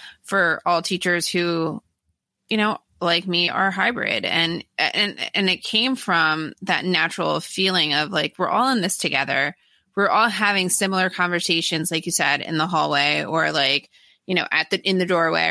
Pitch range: 165-200 Hz